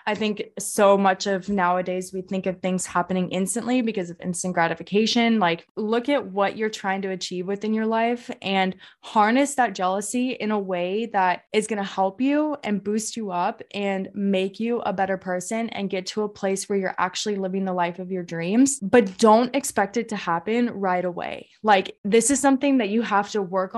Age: 20-39